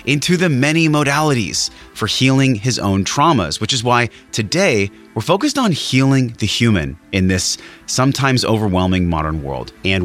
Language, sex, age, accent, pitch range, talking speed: English, male, 30-49, American, 90-120 Hz, 155 wpm